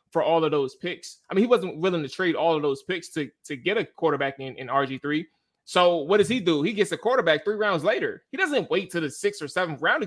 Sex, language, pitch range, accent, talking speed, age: male, English, 155-205 Hz, American, 275 wpm, 20-39